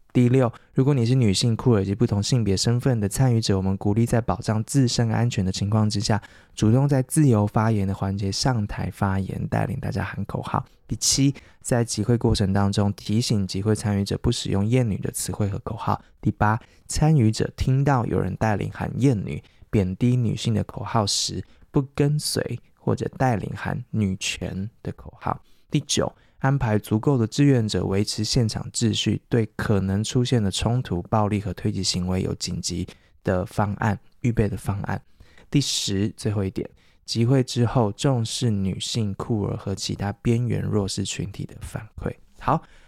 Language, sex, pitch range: Chinese, male, 100-125 Hz